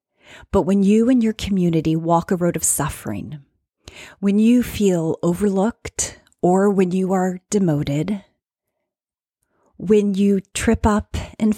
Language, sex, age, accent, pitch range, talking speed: English, female, 30-49, American, 165-215 Hz, 130 wpm